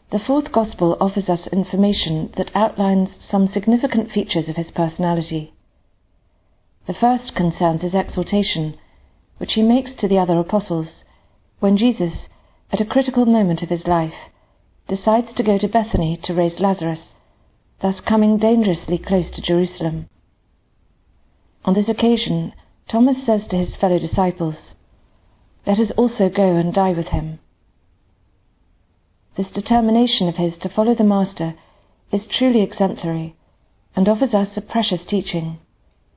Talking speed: 140 wpm